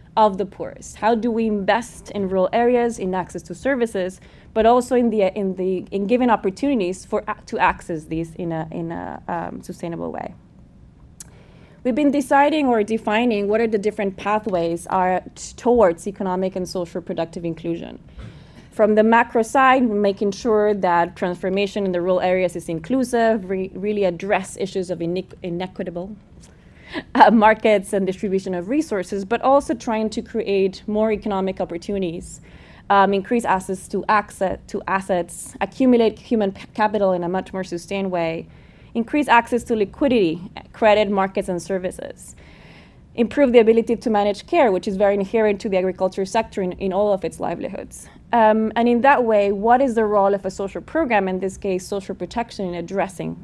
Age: 20-39